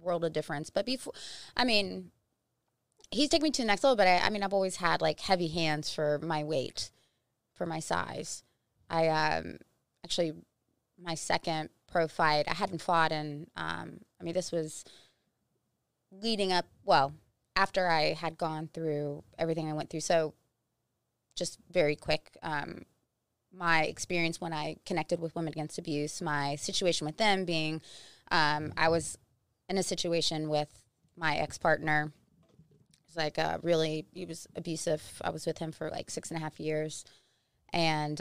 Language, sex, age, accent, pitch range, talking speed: English, female, 20-39, American, 150-175 Hz, 165 wpm